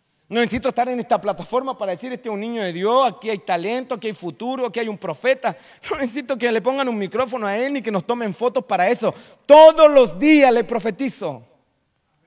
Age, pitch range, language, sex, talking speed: 40-59, 210-270 Hz, Spanish, male, 220 wpm